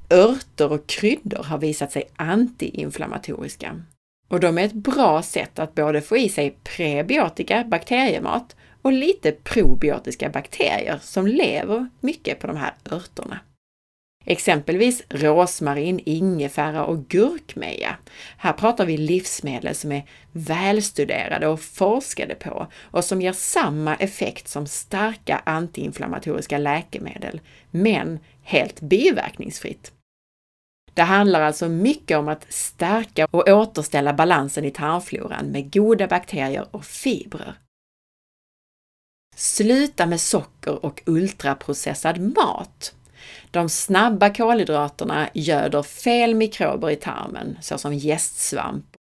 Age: 30-49